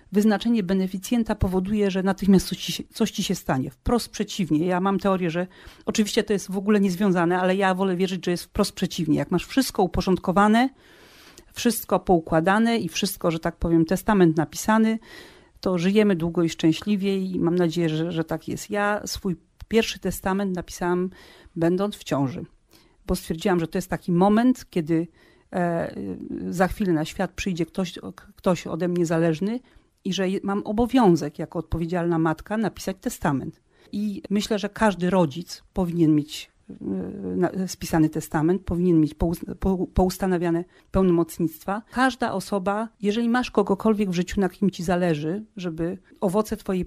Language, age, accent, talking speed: Polish, 40-59, native, 150 wpm